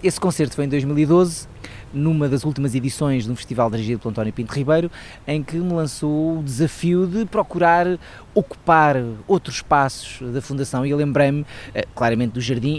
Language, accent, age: Portuguese, Portuguese, 20-39